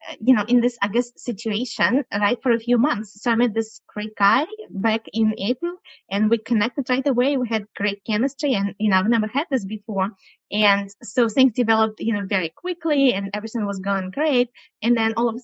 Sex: female